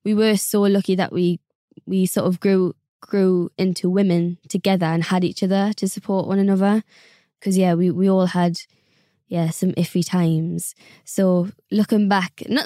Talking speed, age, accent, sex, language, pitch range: 170 wpm, 20-39, British, female, English, 175-205 Hz